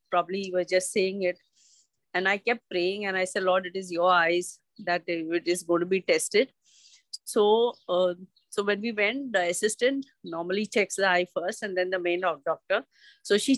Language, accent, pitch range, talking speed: English, Indian, 180-210 Hz, 200 wpm